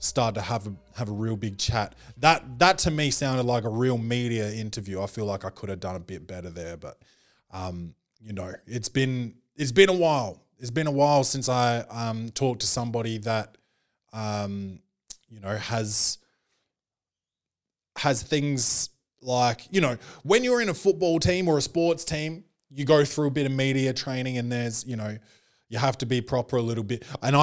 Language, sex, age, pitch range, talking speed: English, male, 20-39, 115-150 Hz, 200 wpm